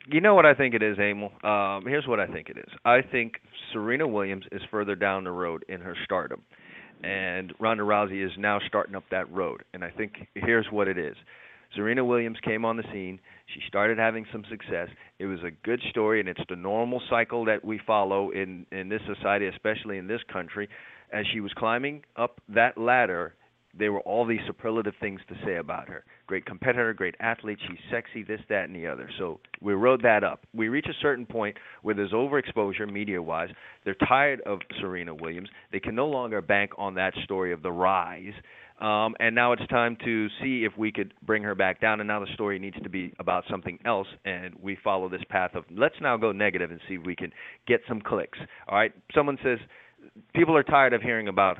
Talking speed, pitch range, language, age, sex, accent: 215 wpm, 95-115 Hz, English, 40-59, male, American